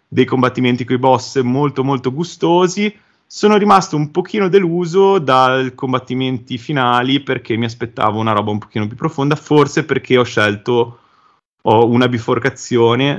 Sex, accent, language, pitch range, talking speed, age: male, native, Italian, 105-125 Hz, 145 wpm, 30-49